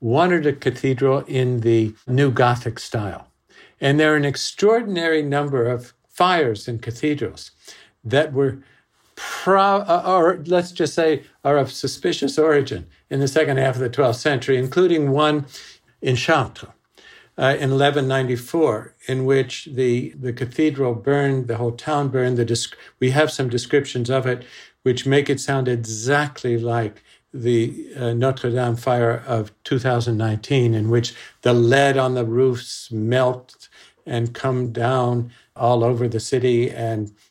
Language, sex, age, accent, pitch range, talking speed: English, male, 60-79, American, 120-145 Hz, 145 wpm